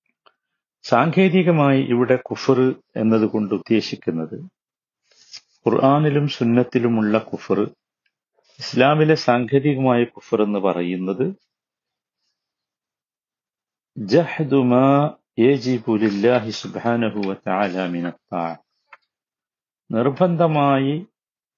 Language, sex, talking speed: Malayalam, male, 40 wpm